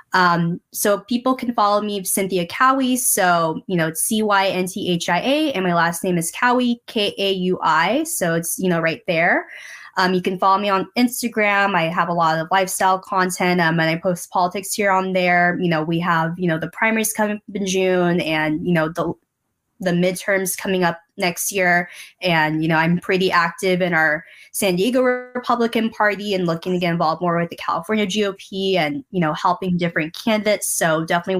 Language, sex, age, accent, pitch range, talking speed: English, female, 20-39, American, 170-205 Hz, 205 wpm